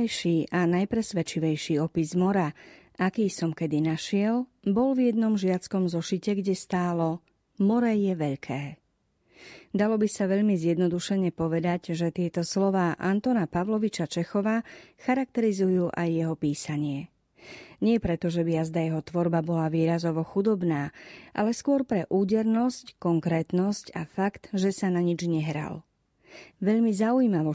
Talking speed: 125 wpm